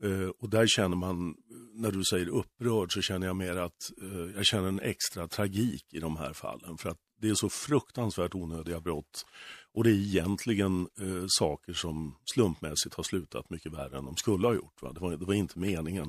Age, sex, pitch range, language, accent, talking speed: 50-69, male, 85-110 Hz, Swedish, native, 205 wpm